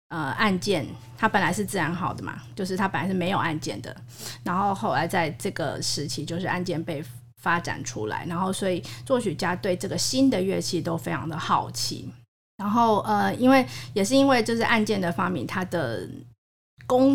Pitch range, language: 135-205 Hz, Chinese